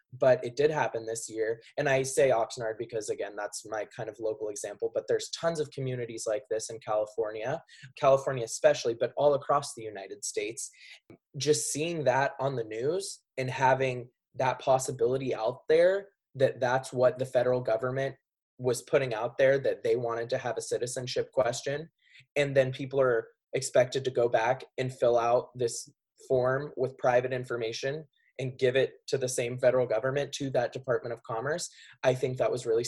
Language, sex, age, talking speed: English, male, 20-39, 180 wpm